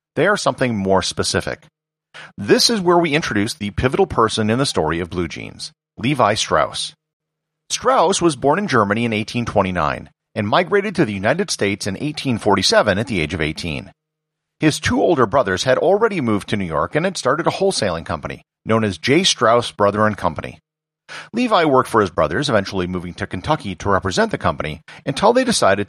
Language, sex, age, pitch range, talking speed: English, male, 40-59, 100-155 Hz, 185 wpm